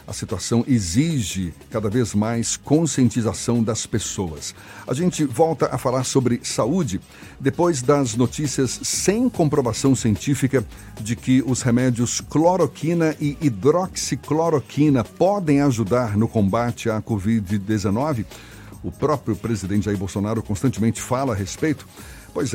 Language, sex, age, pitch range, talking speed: Portuguese, male, 60-79, 110-155 Hz, 120 wpm